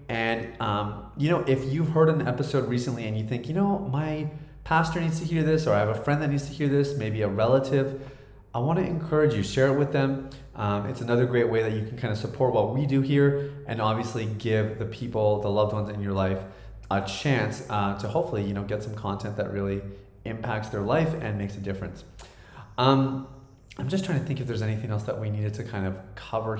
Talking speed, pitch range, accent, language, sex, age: 235 wpm, 105-140 Hz, American, English, male, 30-49